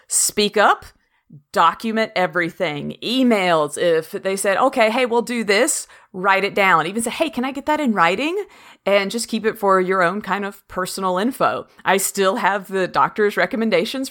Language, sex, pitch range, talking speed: English, female, 180-220 Hz, 180 wpm